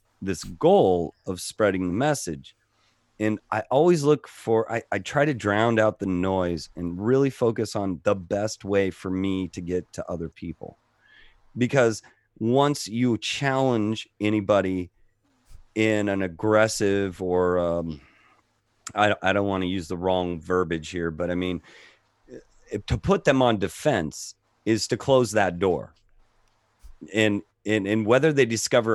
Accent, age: American, 30-49